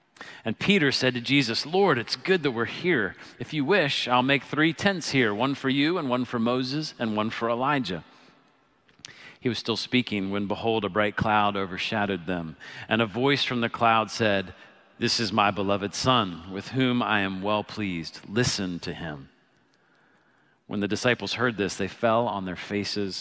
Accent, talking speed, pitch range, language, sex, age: American, 185 wpm, 100-130 Hz, English, male, 40-59